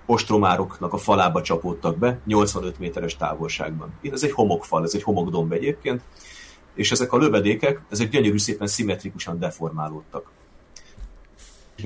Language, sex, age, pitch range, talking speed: Hungarian, male, 30-49, 85-110 Hz, 125 wpm